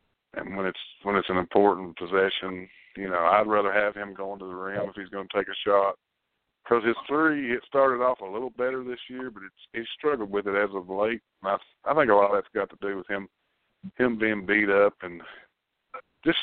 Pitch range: 95-105 Hz